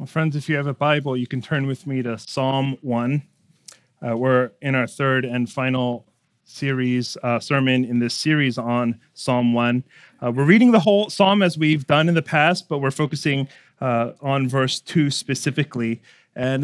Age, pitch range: 30-49, 130-155 Hz